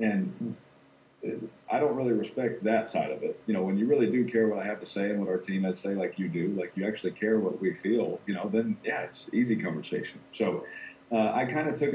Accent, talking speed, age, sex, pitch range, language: American, 255 wpm, 40-59, male, 95-115 Hz, English